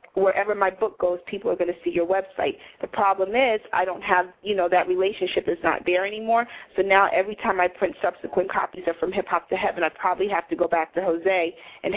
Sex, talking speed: female, 240 wpm